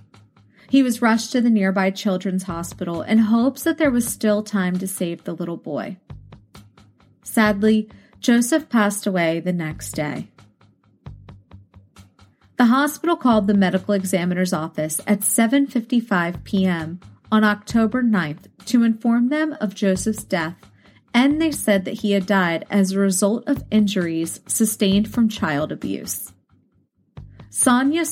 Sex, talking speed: female, 135 wpm